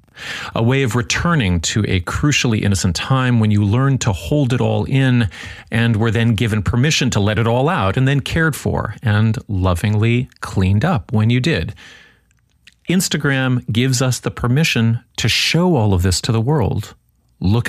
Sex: male